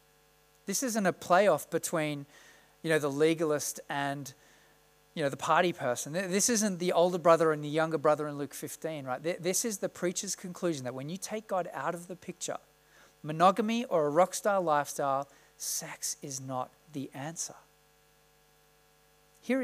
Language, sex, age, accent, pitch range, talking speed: English, male, 40-59, Australian, 150-185 Hz, 165 wpm